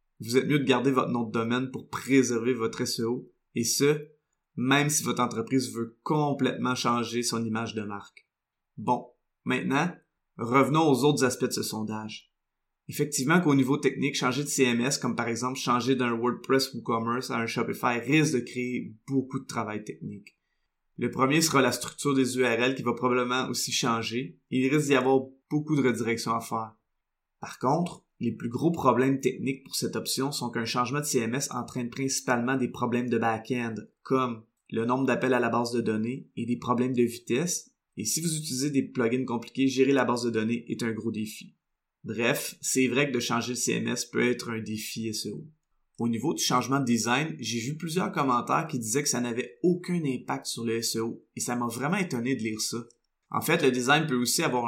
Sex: male